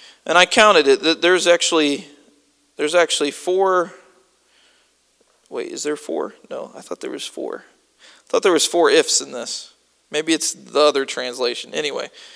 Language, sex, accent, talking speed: English, male, American, 165 wpm